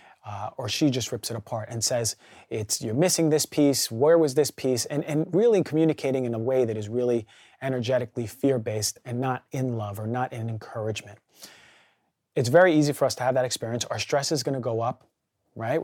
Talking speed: 205 wpm